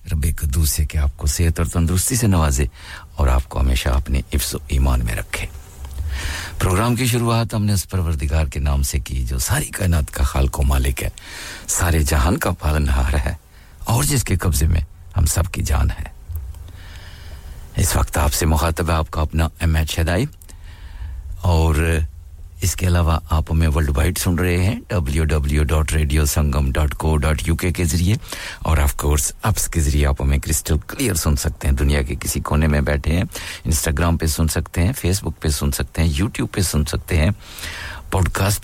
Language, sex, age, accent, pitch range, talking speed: English, male, 60-79, Indian, 75-90 Hz, 170 wpm